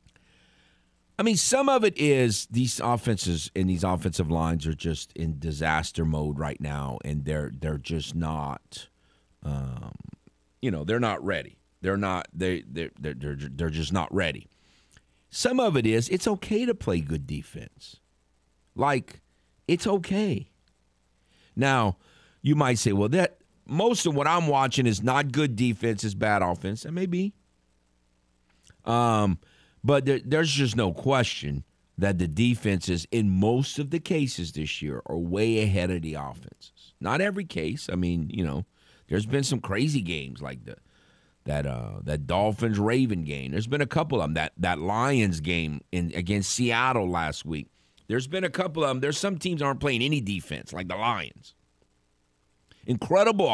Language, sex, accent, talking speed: English, male, American, 165 wpm